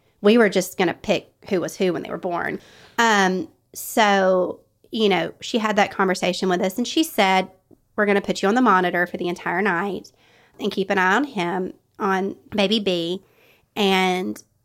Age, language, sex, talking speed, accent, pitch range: 30-49, English, female, 195 wpm, American, 180-205 Hz